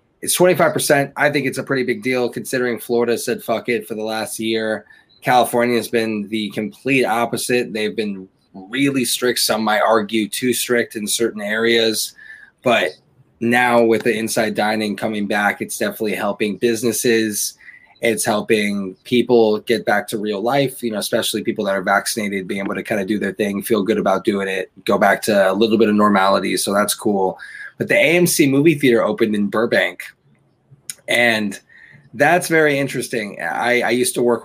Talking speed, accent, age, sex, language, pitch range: 180 wpm, American, 20-39, male, English, 110-125 Hz